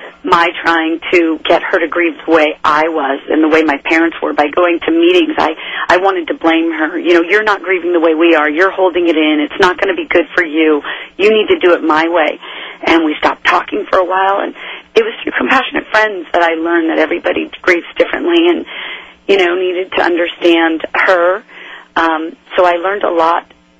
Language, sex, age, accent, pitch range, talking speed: English, female, 40-59, American, 155-190 Hz, 220 wpm